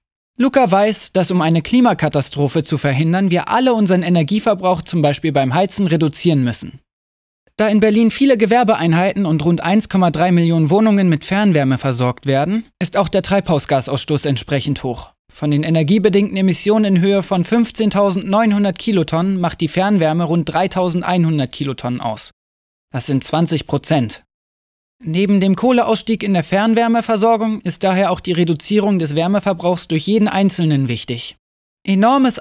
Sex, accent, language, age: male, German, German, 20-39